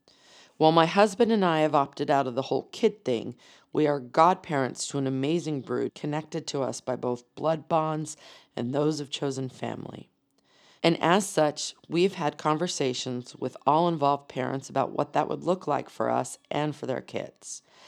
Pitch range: 140-170 Hz